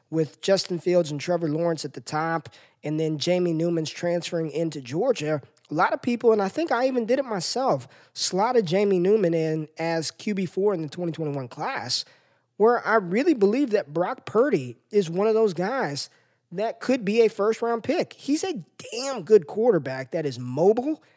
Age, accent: 20-39, American